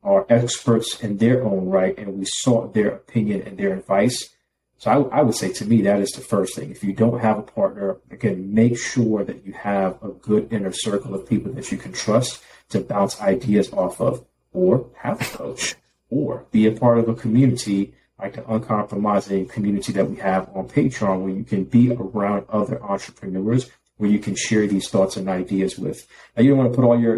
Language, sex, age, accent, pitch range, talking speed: English, male, 50-69, American, 95-115 Hz, 210 wpm